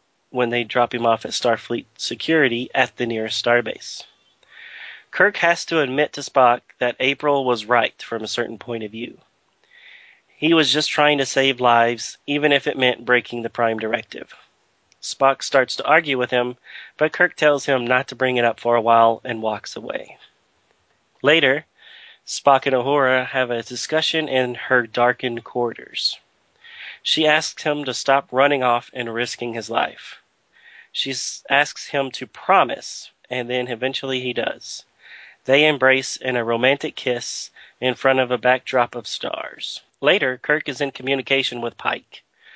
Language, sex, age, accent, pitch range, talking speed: English, male, 30-49, American, 120-140 Hz, 165 wpm